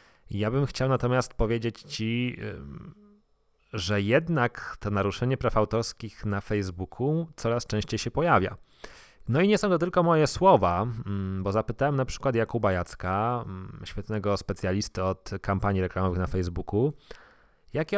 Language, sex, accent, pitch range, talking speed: Polish, male, native, 95-120 Hz, 135 wpm